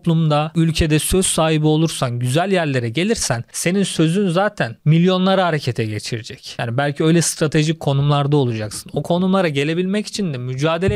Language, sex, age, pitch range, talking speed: Turkish, male, 40-59, 140-180 Hz, 140 wpm